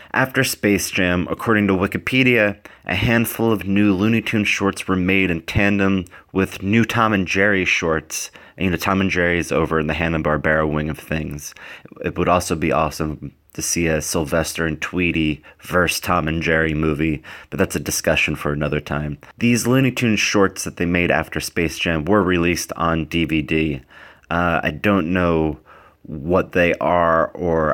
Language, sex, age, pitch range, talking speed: English, male, 30-49, 80-95 Hz, 175 wpm